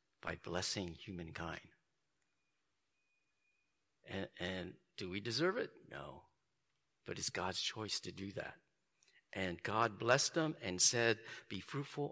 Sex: male